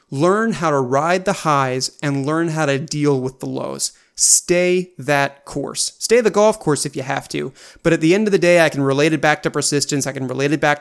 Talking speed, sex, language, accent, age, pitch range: 245 wpm, male, English, American, 30-49, 140-185 Hz